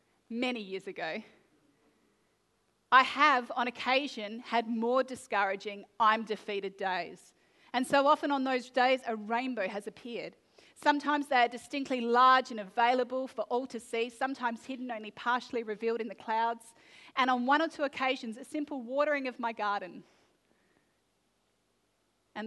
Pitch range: 210-255 Hz